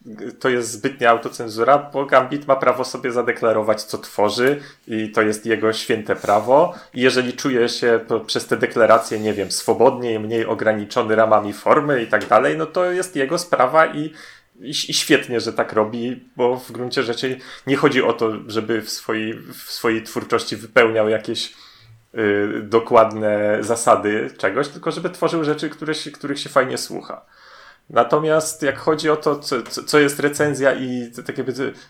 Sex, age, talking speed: male, 30-49, 165 wpm